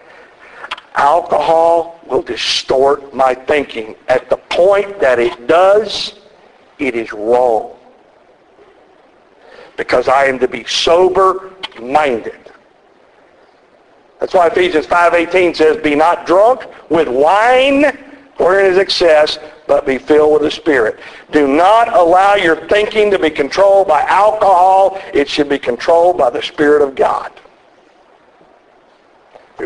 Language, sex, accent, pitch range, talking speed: English, male, American, 140-195 Hz, 120 wpm